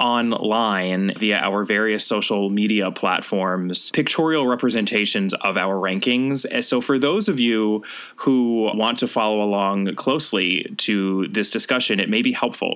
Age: 20-39